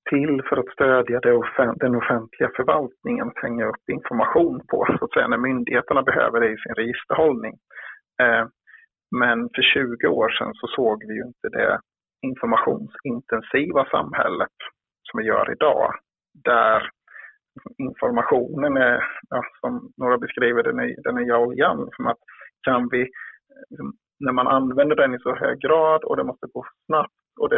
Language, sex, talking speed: Swedish, male, 160 wpm